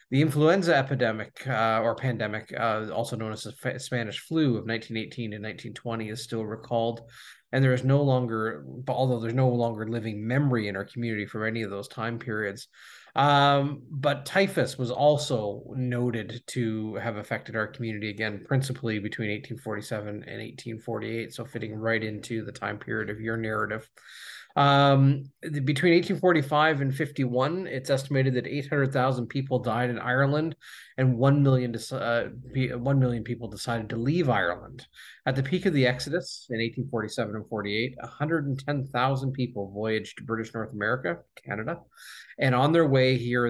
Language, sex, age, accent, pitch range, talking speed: English, male, 20-39, American, 110-135 Hz, 155 wpm